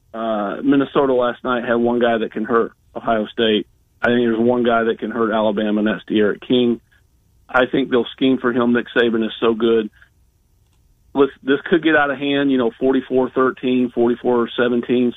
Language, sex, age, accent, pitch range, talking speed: English, male, 40-59, American, 105-125 Hz, 185 wpm